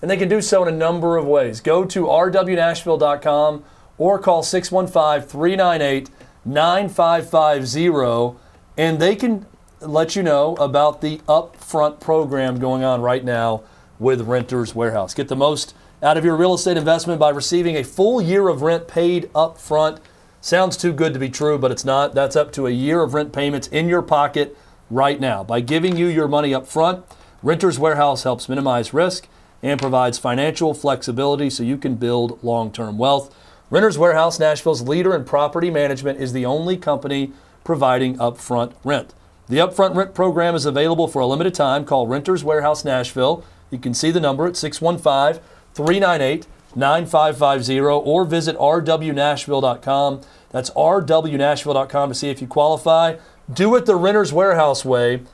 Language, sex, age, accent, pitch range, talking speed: English, male, 40-59, American, 130-165 Hz, 160 wpm